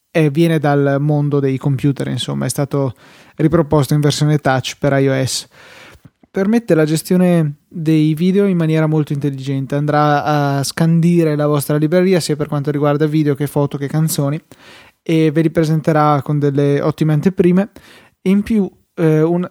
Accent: native